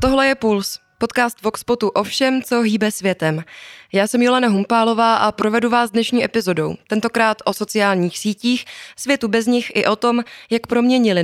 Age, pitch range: 20-39, 200-235 Hz